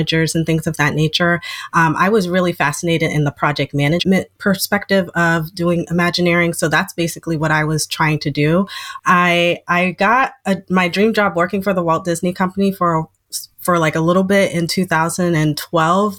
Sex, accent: female, American